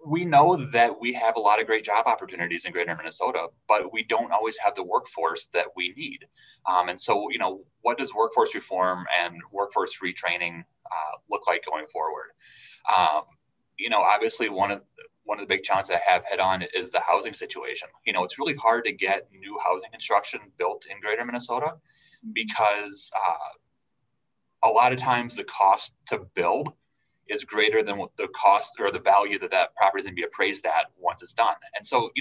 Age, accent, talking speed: 30-49, American, 205 wpm